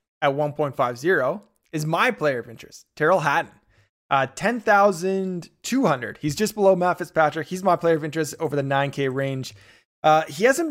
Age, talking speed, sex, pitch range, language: 20-39, 155 wpm, male, 140-185 Hz, English